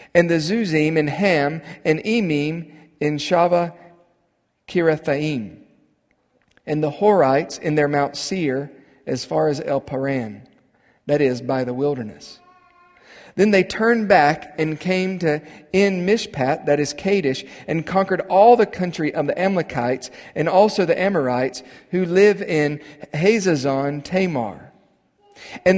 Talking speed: 125 wpm